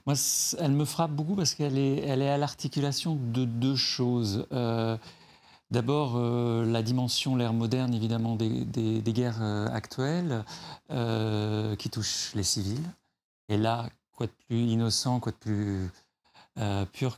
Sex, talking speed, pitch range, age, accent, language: male, 155 wpm, 110-140 Hz, 40-59, French, French